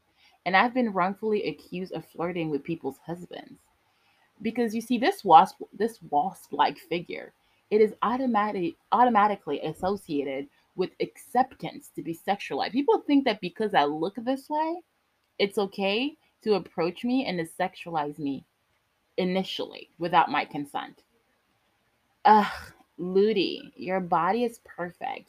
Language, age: English, 20-39